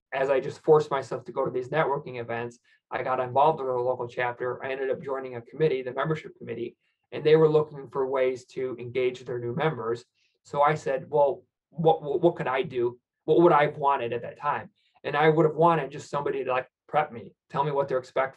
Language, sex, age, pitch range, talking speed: English, male, 20-39, 125-150 Hz, 235 wpm